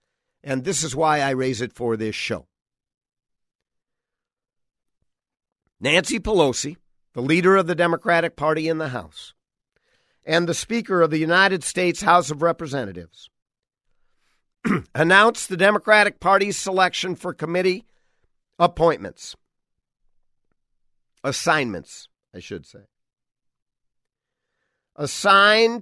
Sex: male